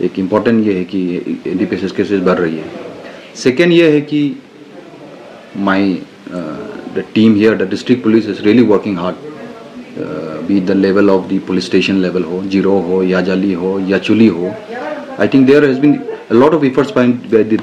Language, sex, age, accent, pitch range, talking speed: English, male, 30-49, Indian, 95-130 Hz, 175 wpm